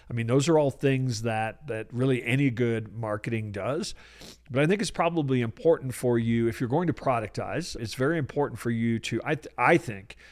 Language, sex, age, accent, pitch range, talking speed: English, male, 50-69, American, 115-140 Hz, 210 wpm